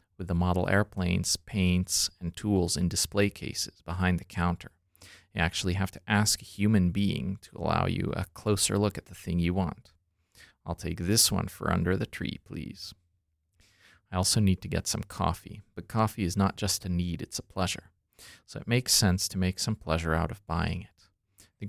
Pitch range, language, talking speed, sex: 90-100 Hz, English, 195 wpm, male